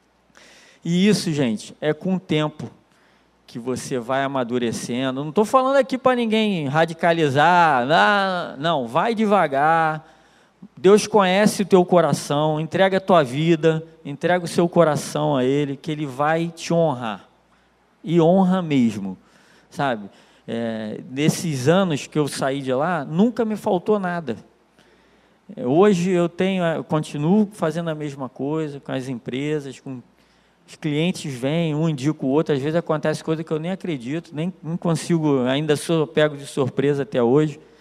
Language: Portuguese